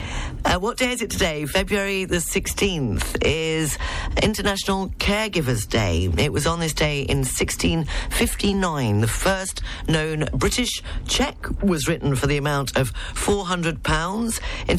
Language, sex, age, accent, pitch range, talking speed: English, female, 40-59, British, 125-175 Hz, 135 wpm